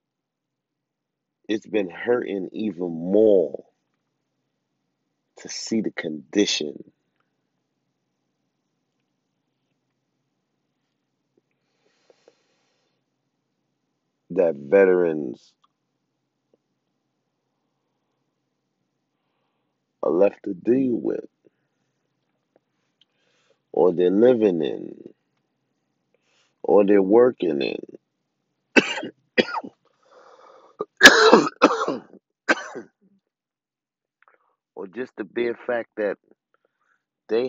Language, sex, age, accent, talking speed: English, male, 50-69, American, 50 wpm